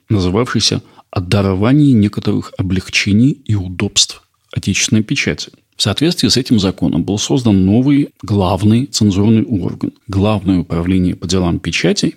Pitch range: 100-120 Hz